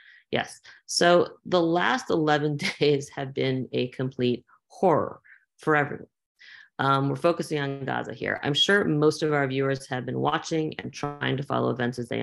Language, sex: English, female